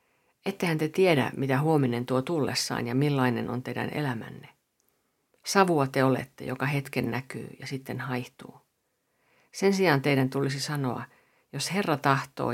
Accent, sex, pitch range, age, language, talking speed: native, female, 125-160 Hz, 50-69, Finnish, 140 wpm